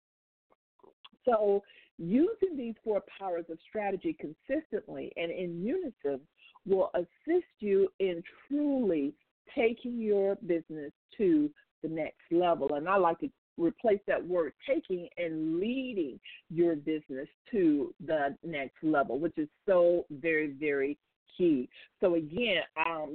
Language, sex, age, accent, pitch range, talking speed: English, female, 50-69, American, 175-250 Hz, 125 wpm